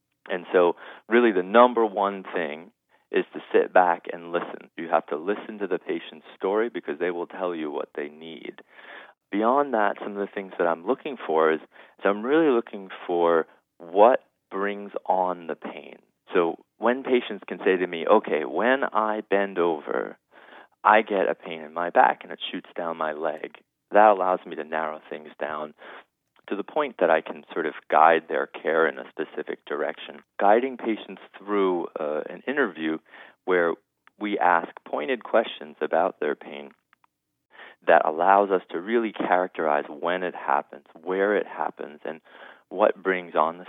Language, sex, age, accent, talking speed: English, male, 30-49, American, 175 wpm